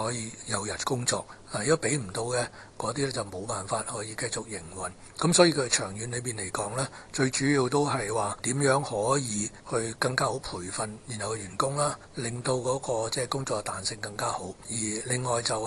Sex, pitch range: male, 110-140 Hz